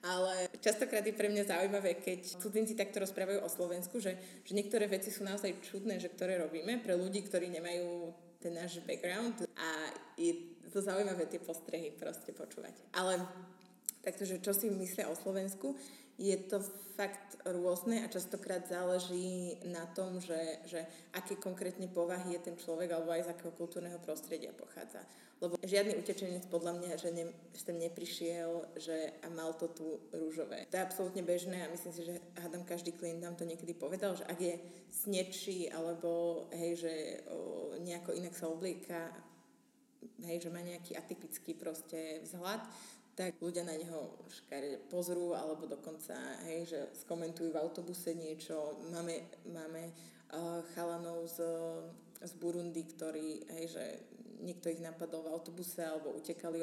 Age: 20-39